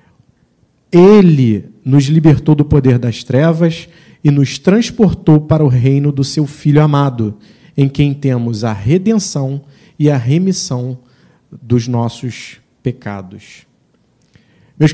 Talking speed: 115 wpm